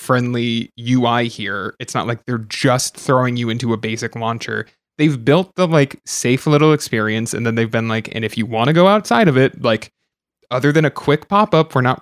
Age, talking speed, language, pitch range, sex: 20-39, 215 wpm, English, 115-130 Hz, male